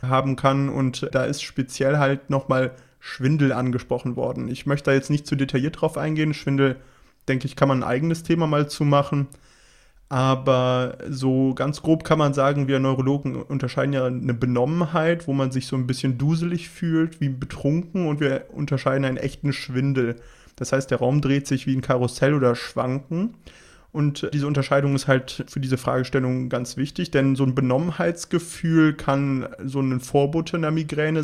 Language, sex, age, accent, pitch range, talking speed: German, male, 30-49, German, 130-150 Hz, 175 wpm